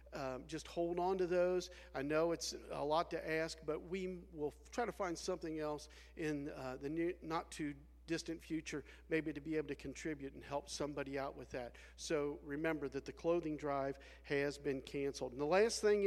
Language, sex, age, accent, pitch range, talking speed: English, male, 50-69, American, 140-175 Hz, 200 wpm